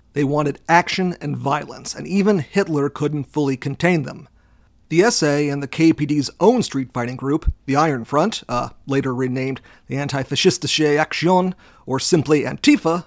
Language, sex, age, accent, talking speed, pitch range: English, male, 40-59, American, 150 wpm, 135-165 Hz